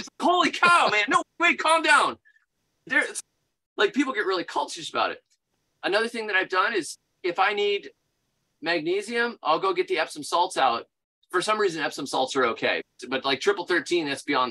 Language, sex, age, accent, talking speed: English, male, 30-49, American, 185 wpm